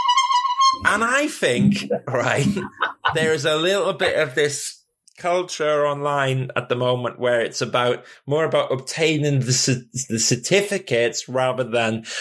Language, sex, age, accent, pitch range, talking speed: English, male, 20-39, British, 120-155 Hz, 135 wpm